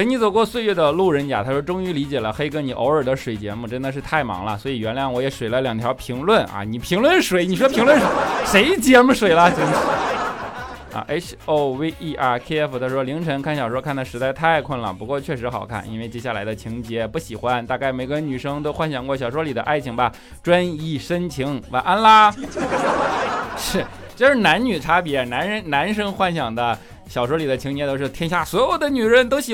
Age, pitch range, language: 20-39, 125-205 Hz, Chinese